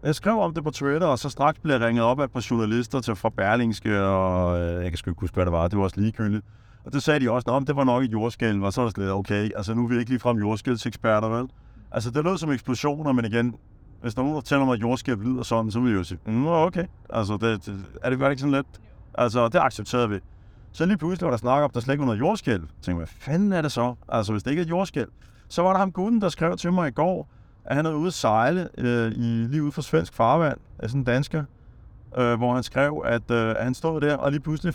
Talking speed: 280 wpm